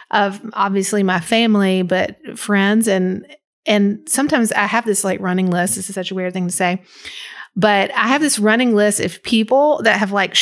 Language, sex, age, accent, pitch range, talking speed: English, female, 30-49, American, 190-225 Hz, 195 wpm